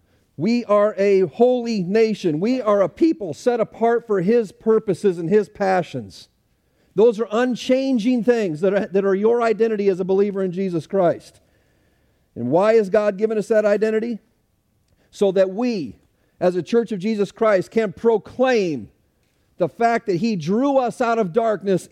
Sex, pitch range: male, 180-225 Hz